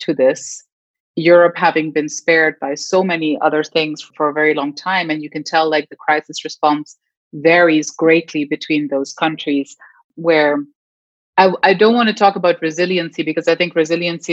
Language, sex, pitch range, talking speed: English, female, 155-180 Hz, 175 wpm